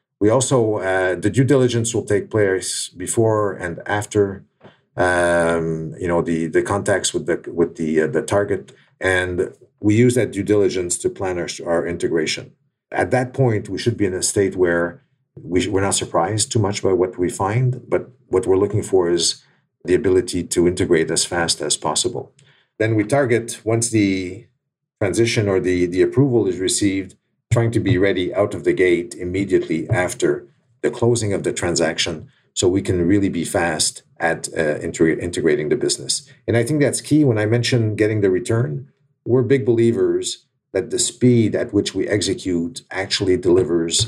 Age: 50-69